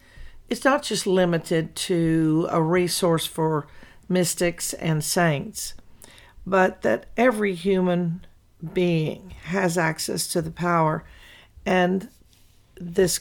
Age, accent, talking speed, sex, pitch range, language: 50-69, American, 105 wpm, female, 155-185 Hz, English